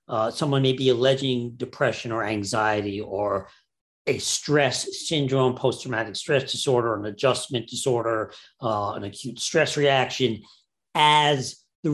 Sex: male